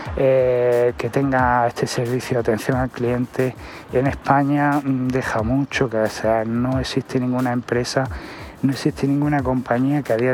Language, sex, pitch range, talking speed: Spanish, male, 120-145 Hz, 150 wpm